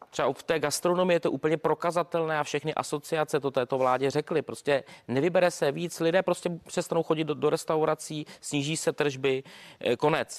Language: Czech